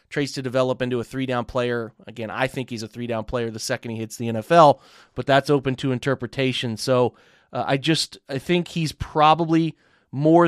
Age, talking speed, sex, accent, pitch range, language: 30-49, 195 wpm, male, American, 125-155 Hz, English